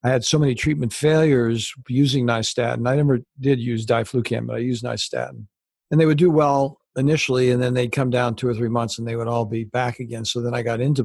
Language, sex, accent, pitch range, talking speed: English, male, American, 120-140 Hz, 240 wpm